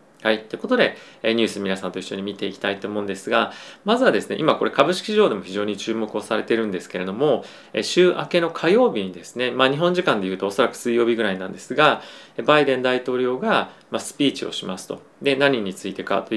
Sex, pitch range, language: male, 105-155 Hz, Japanese